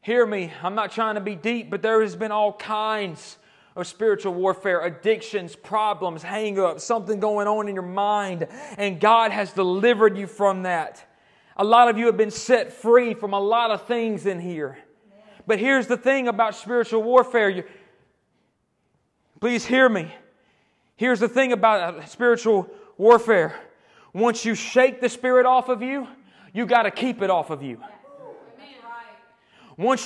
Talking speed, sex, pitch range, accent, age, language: 165 wpm, male, 210-260 Hz, American, 30-49, English